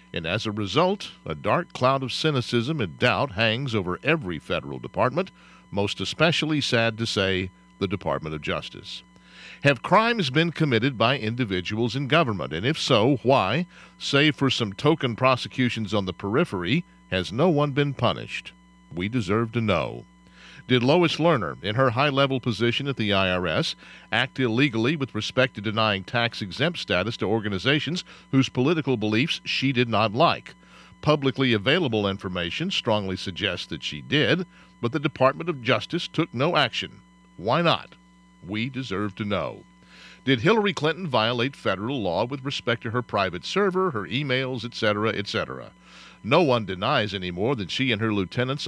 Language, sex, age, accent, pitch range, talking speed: English, male, 50-69, American, 100-140 Hz, 160 wpm